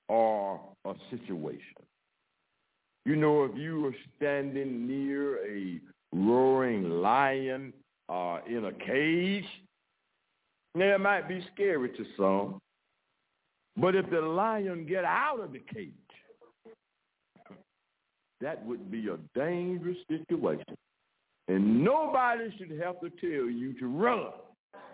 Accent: American